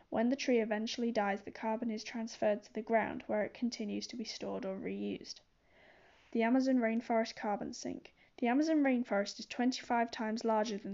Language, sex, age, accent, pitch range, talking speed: English, female, 10-29, British, 210-245 Hz, 180 wpm